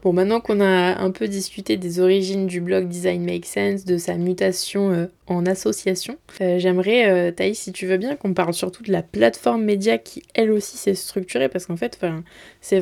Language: French